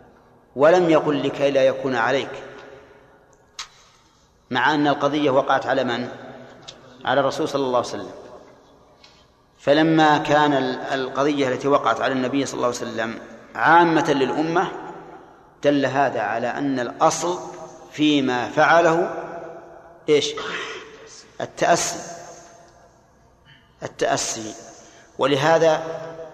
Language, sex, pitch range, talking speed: Arabic, male, 135-160 Hz, 95 wpm